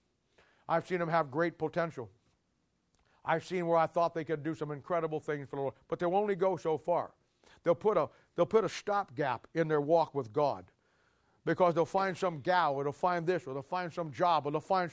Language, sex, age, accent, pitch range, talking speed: English, male, 60-79, American, 140-175 Hz, 215 wpm